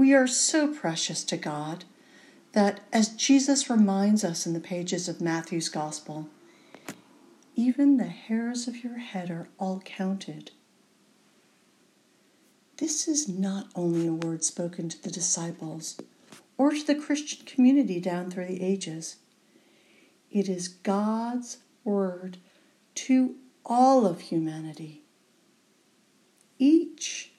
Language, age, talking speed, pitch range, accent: English, 50-69, 120 wpm, 180-270 Hz, American